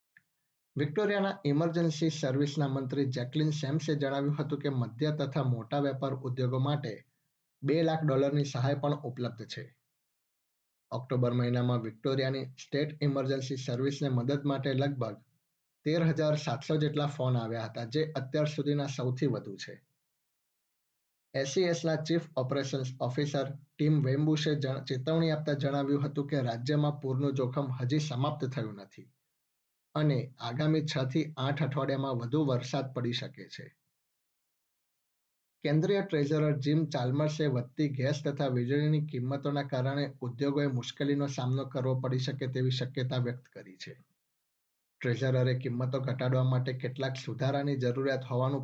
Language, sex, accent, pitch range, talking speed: Gujarati, male, native, 130-150 Hz, 120 wpm